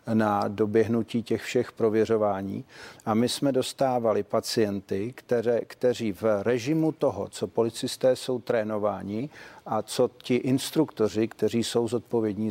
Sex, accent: male, native